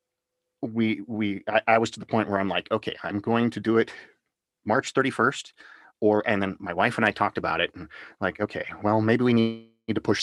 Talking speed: 225 wpm